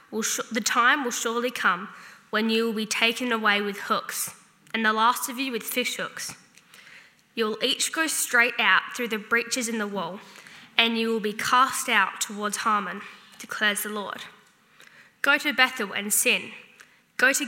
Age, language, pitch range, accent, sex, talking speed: 10-29, English, 215-245 Hz, Australian, female, 175 wpm